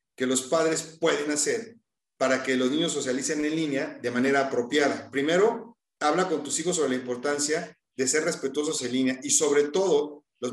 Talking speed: 180 wpm